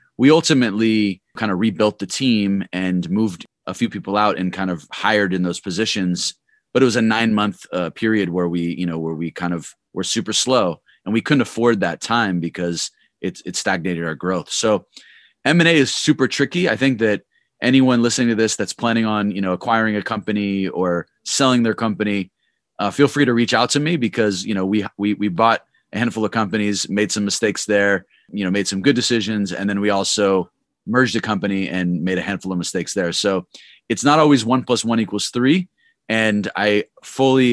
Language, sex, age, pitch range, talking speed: English, male, 30-49, 95-115 Hz, 210 wpm